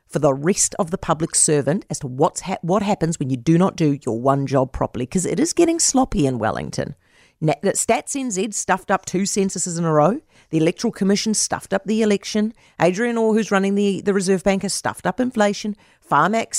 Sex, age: female, 40-59